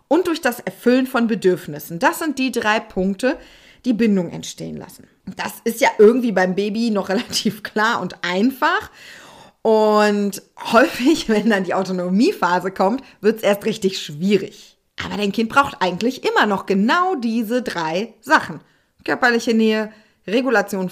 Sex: female